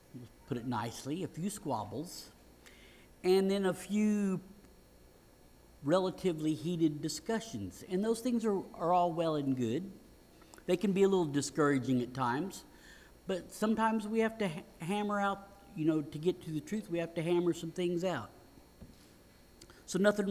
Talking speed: 155 wpm